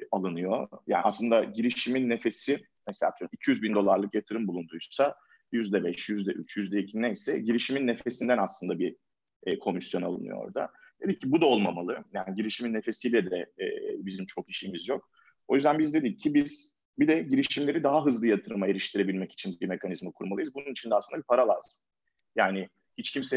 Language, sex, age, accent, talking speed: Turkish, male, 40-59, native, 165 wpm